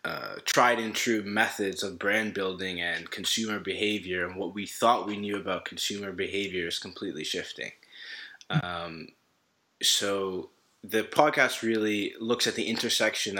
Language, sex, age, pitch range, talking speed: English, male, 20-39, 95-110 Hz, 145 wpm